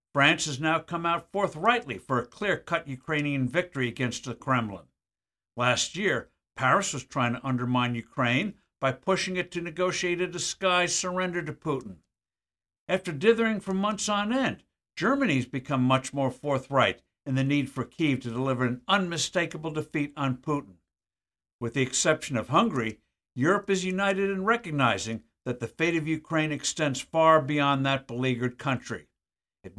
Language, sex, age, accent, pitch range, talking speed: English, male, 60-79, American, 125-175 Hz, 155 wpm